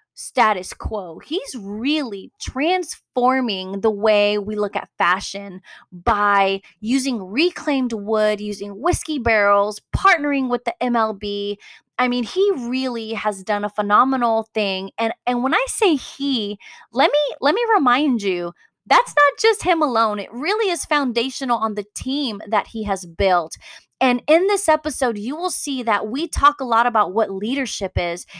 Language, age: English, 20-39